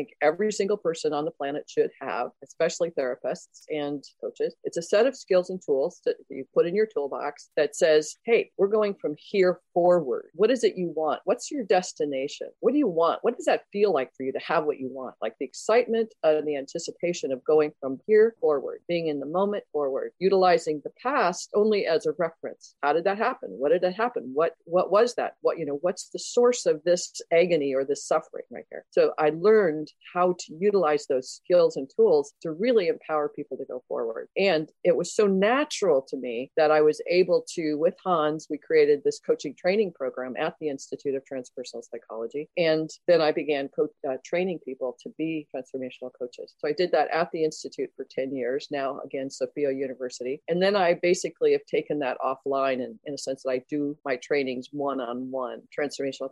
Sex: female